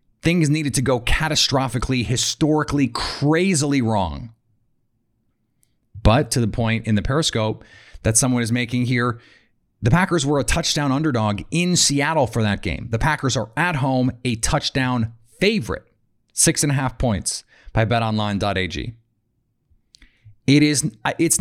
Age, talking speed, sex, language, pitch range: 30-49, 130 wpm, male, English, 110-130 Hz